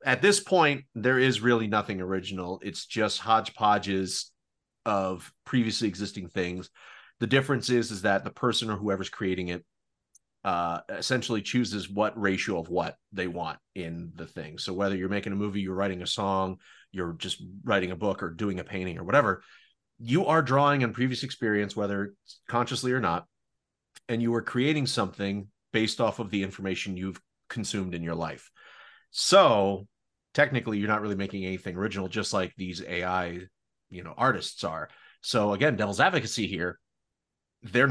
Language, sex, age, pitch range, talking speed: English, male, 30-49, 95-120 Hz, 170 wpm